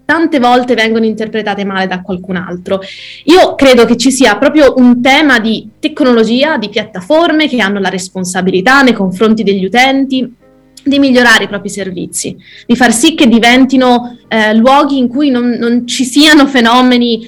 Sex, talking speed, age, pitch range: female, 165 wpm, 20-39, 215-255 Hz